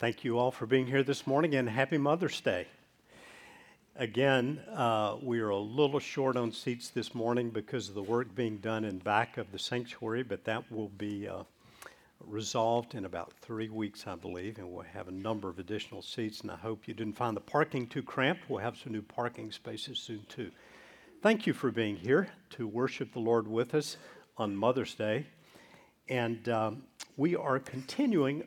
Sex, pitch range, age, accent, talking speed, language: male, 110-130 Hz, 50-69, American, 190 wpm, English